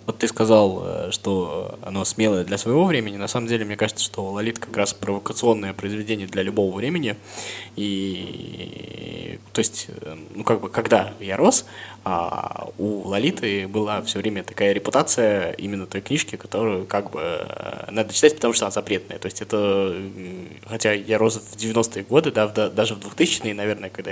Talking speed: 170 wpm